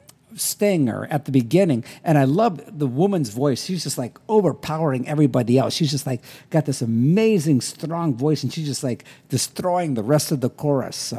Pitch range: 135-180 Hz